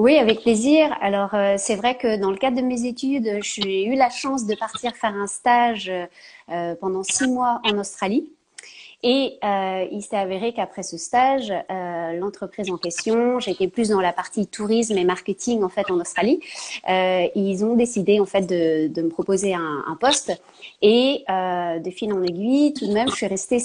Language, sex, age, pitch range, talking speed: French, female, 30-49, 190-240 Hz, 200 wpm